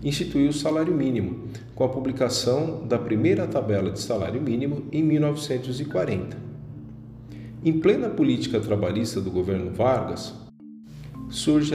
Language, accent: Portuguese, Brazilian